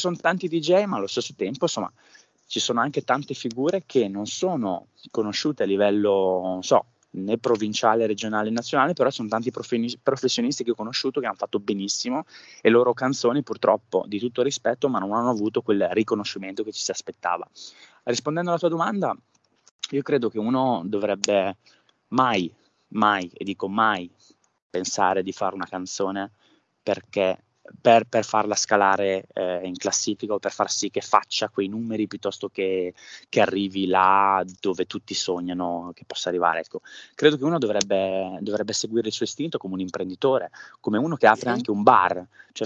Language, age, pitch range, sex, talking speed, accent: Italian, 20-39, 95-120 Hz, male, 170 wpm, native